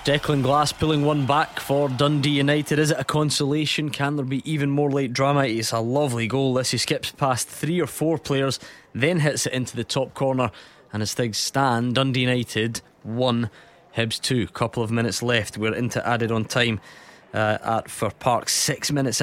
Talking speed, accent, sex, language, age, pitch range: 195 wpm, British, male, English, 20-39, 115-145 Hz